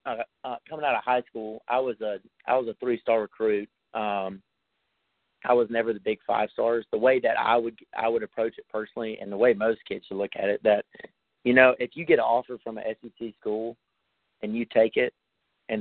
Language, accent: English, American